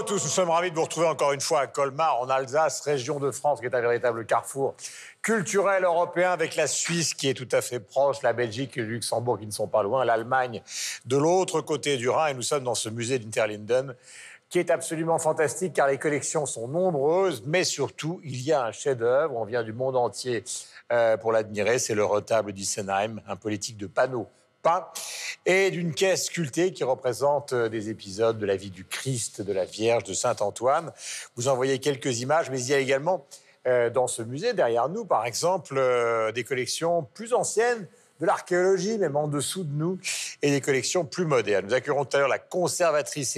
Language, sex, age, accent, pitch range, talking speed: French, male, 50-69, French, 120-170 Hz, 205 wpm